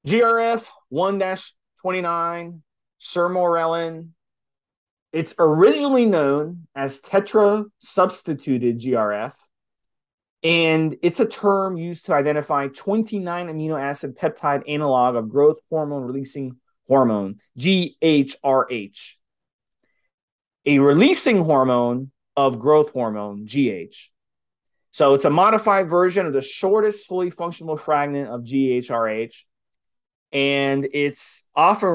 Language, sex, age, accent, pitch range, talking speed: English, male, 30-49, American, 130-170 Hz, 95 wpm